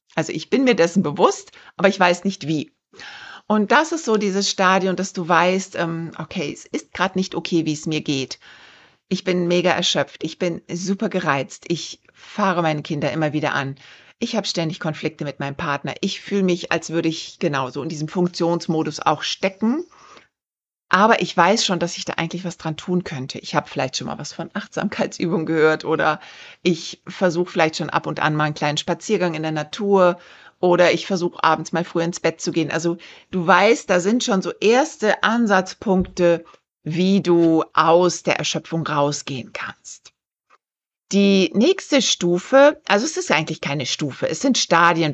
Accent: German